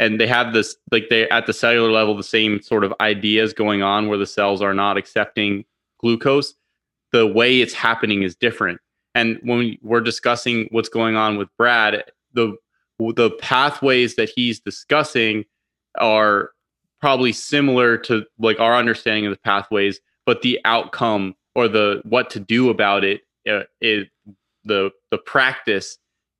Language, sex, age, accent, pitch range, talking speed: English, male, 20-39, American, 105-115 Hz, 160 wpm